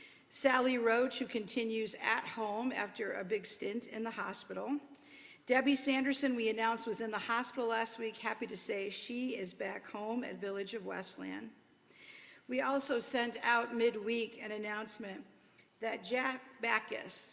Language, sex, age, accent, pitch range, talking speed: English, female, 50-69, American, 190-230 Hz, 150 wpm